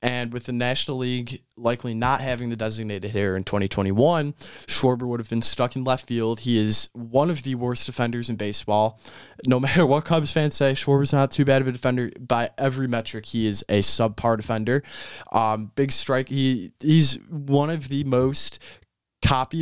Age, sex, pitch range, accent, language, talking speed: 20-39, male, 115-140 Hz, American, English, 195 wpm